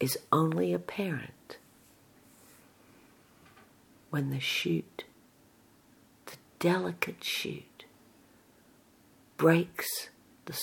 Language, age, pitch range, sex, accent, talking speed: English, 50-69, 130-170 Hz, female, American, 60 wpm